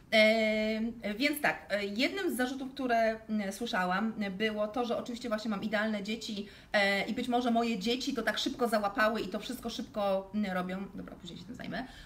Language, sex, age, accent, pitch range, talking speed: Polish, female, 30-49, native, 205-255 Hz, 180 wpm